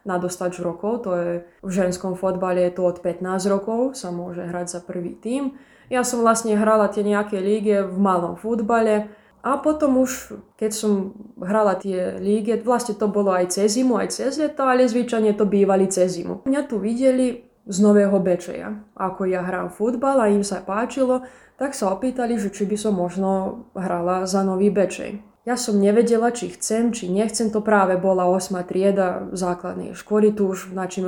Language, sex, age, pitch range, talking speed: Slovak, female, 20-39, 185-230 Hz, 180 wpm